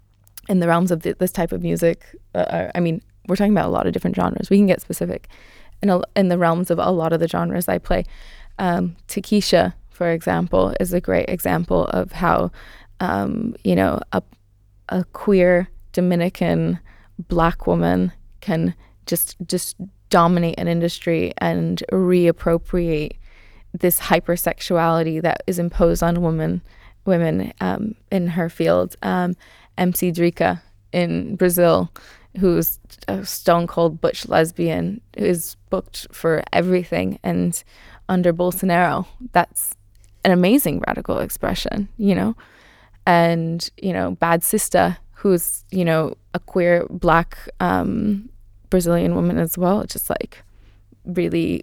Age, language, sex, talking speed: 20-39, English, female, 140 wpm